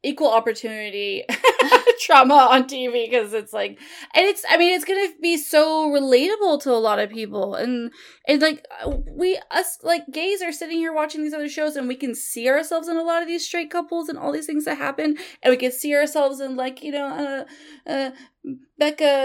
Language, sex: English, female